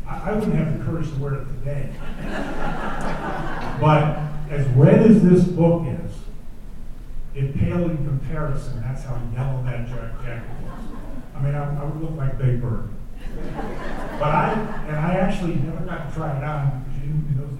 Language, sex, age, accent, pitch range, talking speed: English, male, 40-59, American, 130-155 Hz, 165 wpm